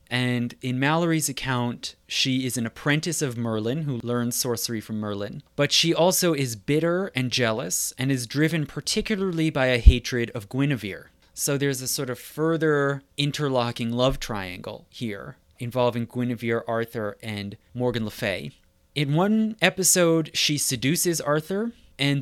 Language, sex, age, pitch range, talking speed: English, male, 30-49, 115-150 Hz, 150 wpm